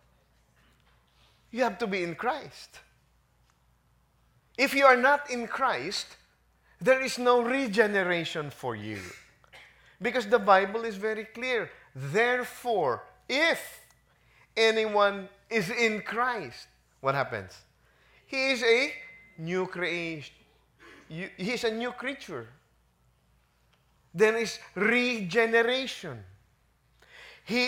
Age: 30-49